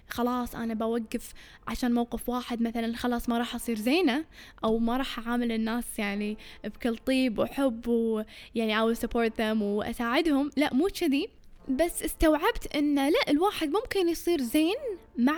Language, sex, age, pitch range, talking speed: Arabic, female, 10-29, 230-295 Hz, 150 wpm